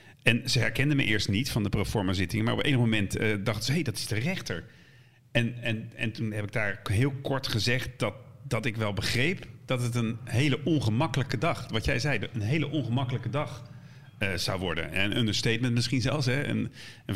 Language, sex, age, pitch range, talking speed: Dutch, male, 40-59, 110-140 Hz, 210 wpm